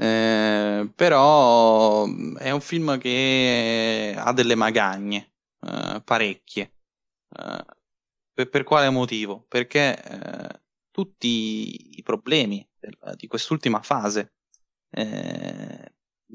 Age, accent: 20-39, native